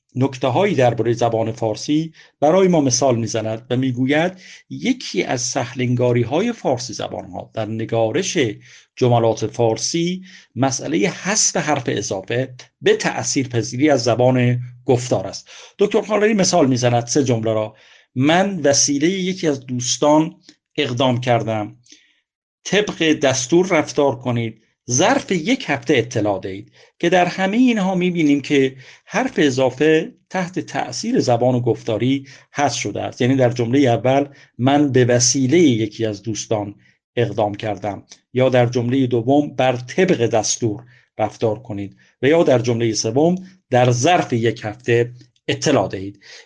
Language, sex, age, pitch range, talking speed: Persian, male, 50-69, 120-155 Hz, 130 wpm